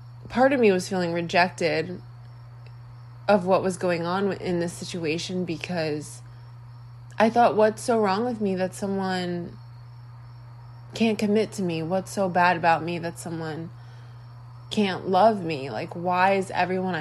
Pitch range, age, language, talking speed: 120-185 Hz, 20-39, English, 150 wpm